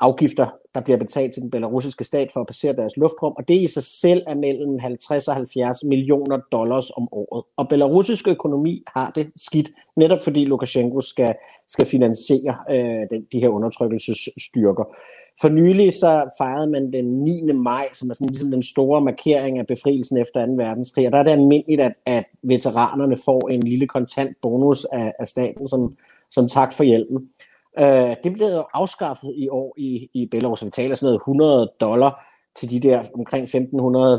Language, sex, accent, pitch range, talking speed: Danish, male, native, 120-145 Hz, 185 wpm